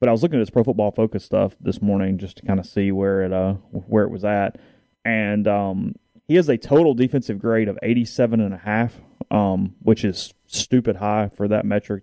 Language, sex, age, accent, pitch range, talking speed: English, male, 30-49, American, 100-115 Hz, 225 wpm